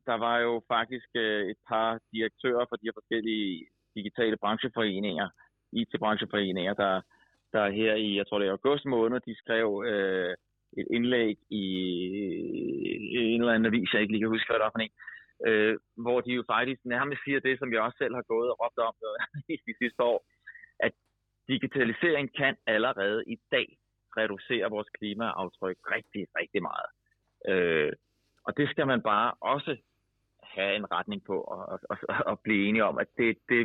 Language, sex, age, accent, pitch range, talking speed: Danish, male, 30-49, native, 105-125 Hz, 160 wpm